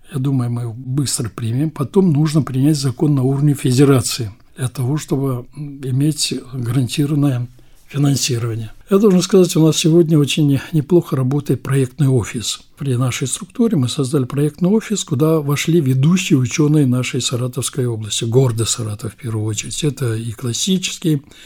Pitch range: 125-155 Hz